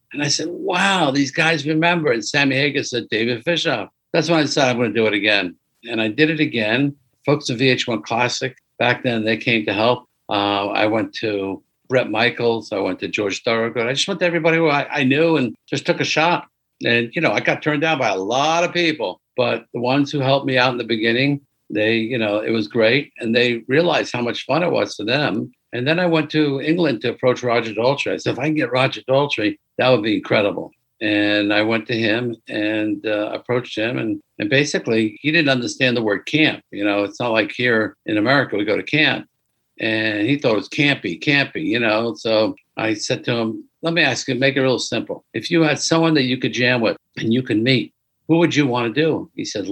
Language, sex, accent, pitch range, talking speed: English, male, American, 110-155 Hz, 235 wpm